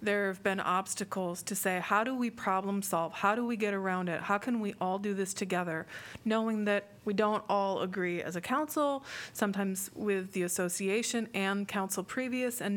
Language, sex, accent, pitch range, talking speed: English, female, American, 185-215 Hz, 195 wpm